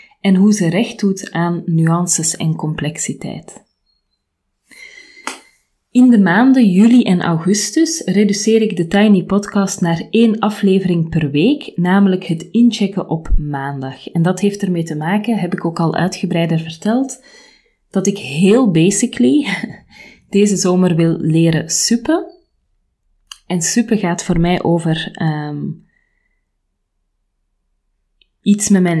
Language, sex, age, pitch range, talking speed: Dutch, female, 30-49, 170-210 Hz, 125 wpm